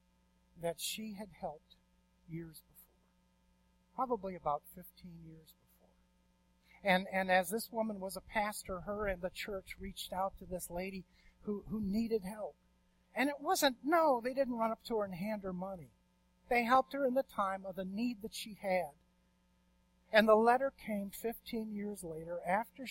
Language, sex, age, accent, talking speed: English, male, 50-69, American, 175 wpm